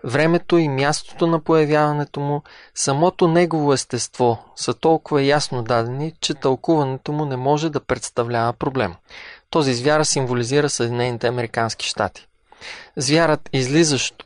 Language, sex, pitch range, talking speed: Bulgarian, male, 125-155 Hz, 120 wpm